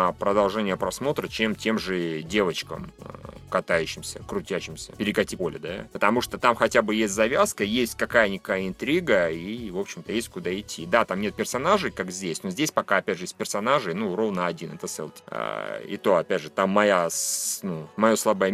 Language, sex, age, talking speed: Russian, male, 30-49, 180 wpm